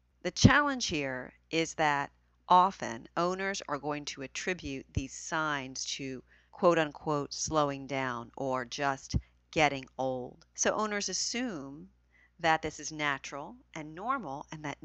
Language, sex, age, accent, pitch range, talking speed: English, female, 40-59, American, 140-190 Hz, 135 wpm